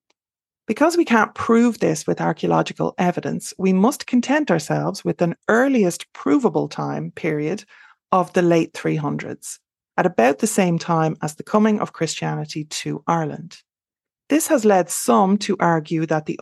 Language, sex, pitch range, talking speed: English, female, 155-215 Hz, 155 wpm